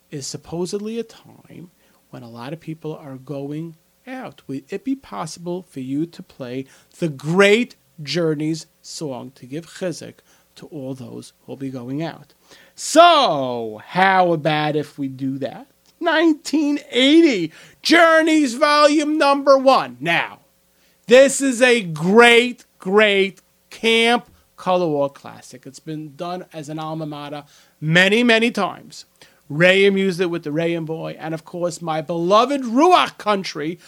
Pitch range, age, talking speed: 145-215 Hz, 30-49, 145 wpm